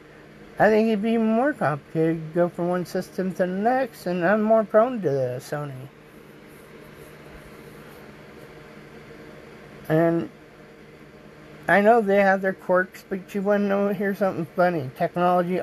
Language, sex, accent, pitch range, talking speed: English, male, American, 130-185 Hz, 145 wpm